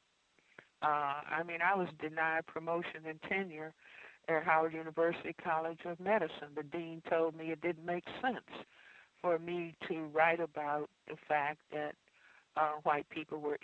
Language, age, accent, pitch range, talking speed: English, 60-79, American, 155-170 Hz, 155 wpm